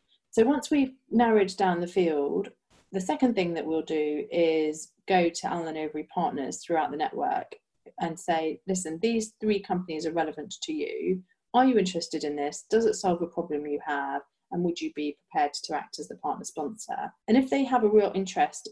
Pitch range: 160-205 Hz